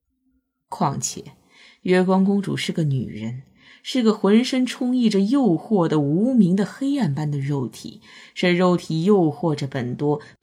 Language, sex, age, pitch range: Chinese, female, 20-39, 150-220 Hz